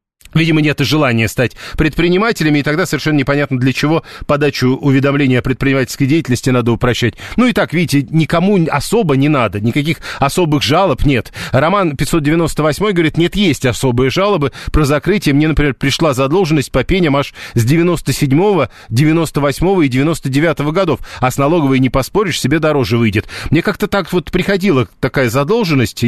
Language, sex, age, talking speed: Russian, male, 40-59, 155 wpm